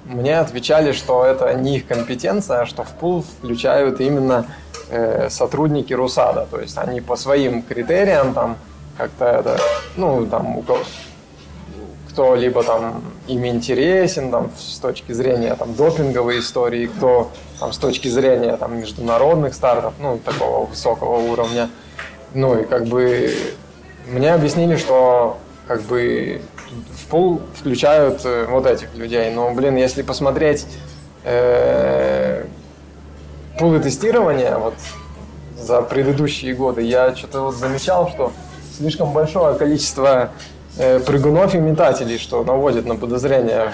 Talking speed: 125 wpm